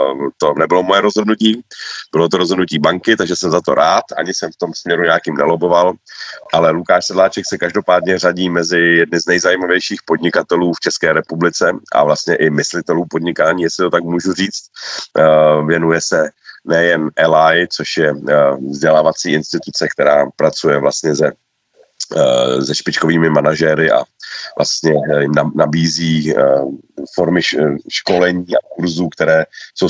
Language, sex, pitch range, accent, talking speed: Czech, male, 75-90 Hz, native, 140 wpm